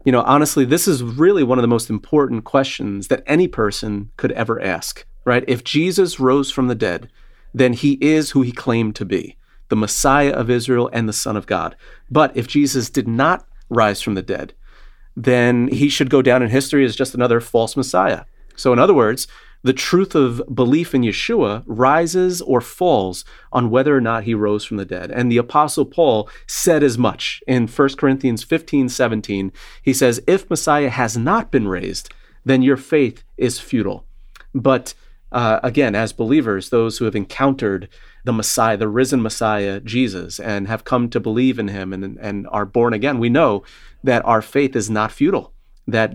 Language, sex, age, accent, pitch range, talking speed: English, male, 40-59, American, 110-135 Hz, 190 wpm